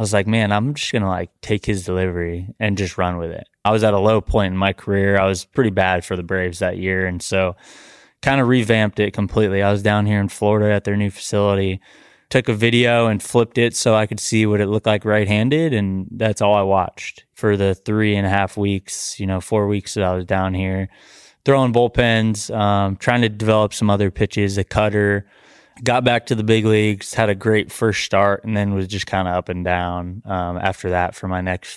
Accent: American